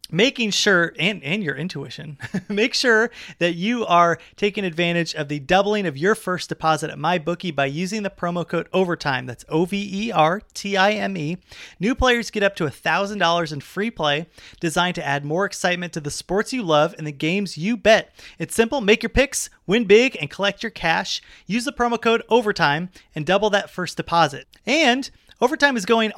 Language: English